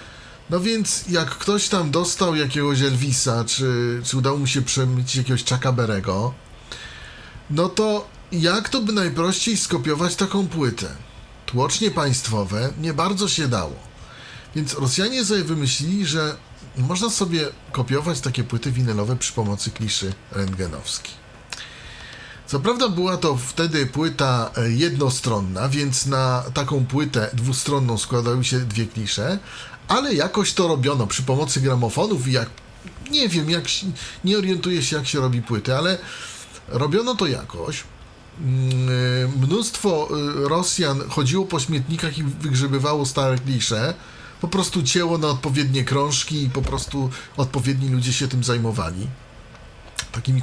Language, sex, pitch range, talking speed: Polish, male, 125-170 Hz, 130 wpm